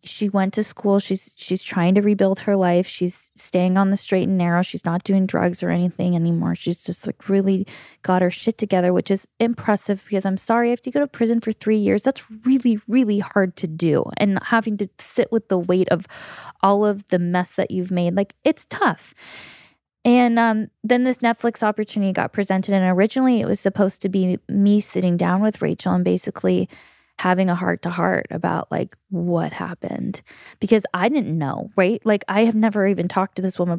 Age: 20-39